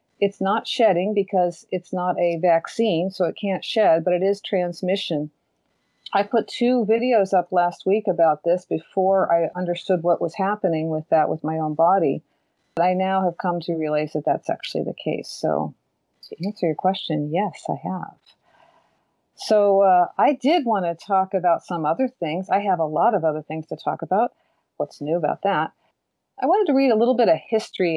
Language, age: English, 40-59